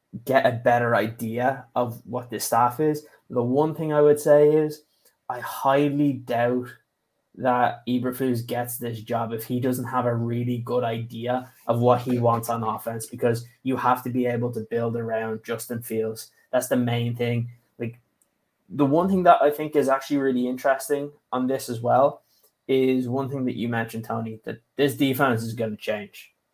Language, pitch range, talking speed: English, 120-135 Hz, 185 wpm